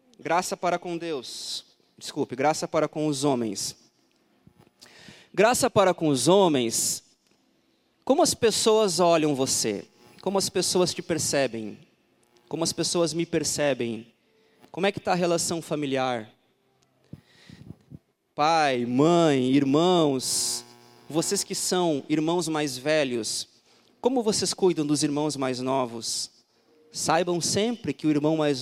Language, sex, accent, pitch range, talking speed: Portuguese, male, Brazilian, 130-170 Hz, 125 wpm